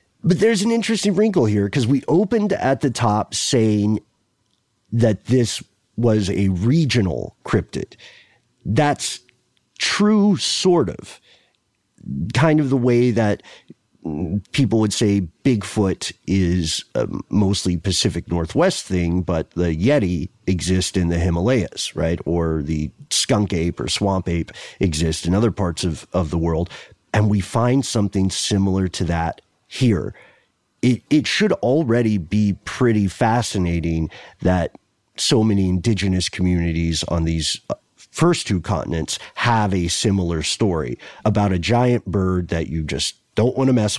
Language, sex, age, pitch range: English, male, 50-69, 85-120 Hz